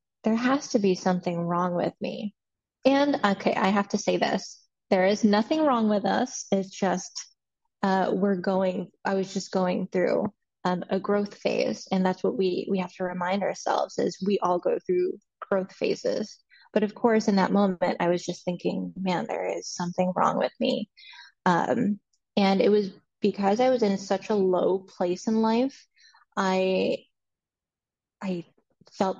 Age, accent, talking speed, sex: 10-29, American, 175 wpm, female